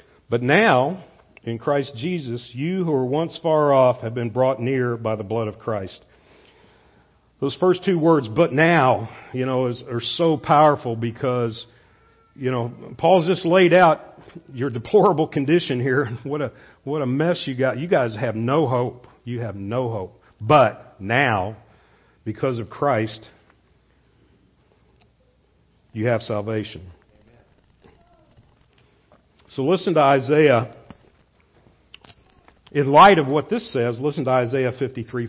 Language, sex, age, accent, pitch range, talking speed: English, male, 50-69, American, 110-145 Hz, 140 wpm